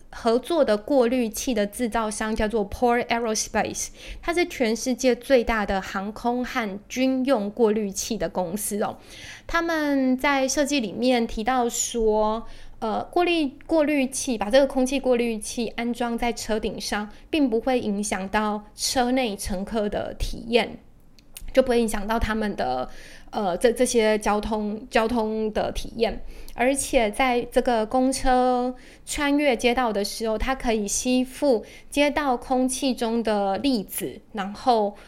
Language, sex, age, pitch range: Chinese, female, 20-39, 215-260 Hz